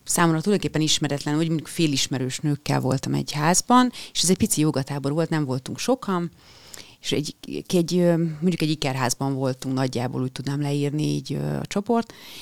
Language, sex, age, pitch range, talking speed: Hungarian, female, 30-49, 135-175 Hz, 150 wpm